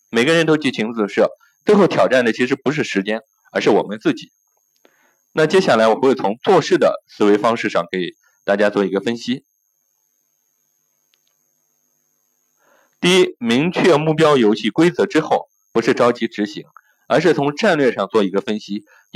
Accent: native